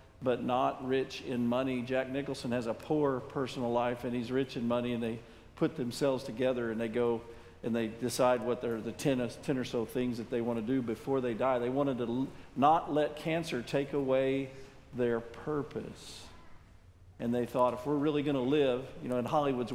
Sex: male